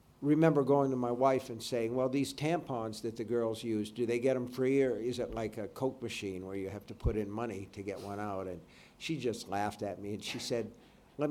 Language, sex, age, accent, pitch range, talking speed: French, male, 50-69, American, 100-125 Hz, 250 wpm